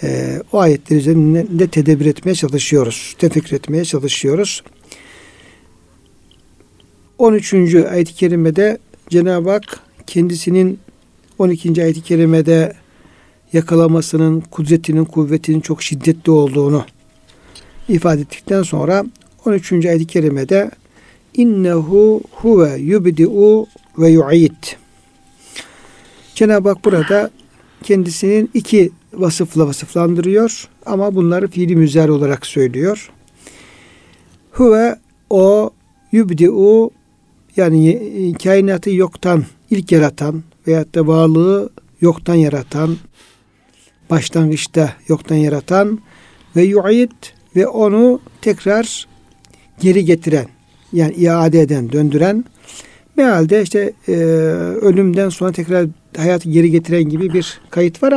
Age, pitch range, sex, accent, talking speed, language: 60-79, 160-195 Hz, male, native, 95 wpm, Turkish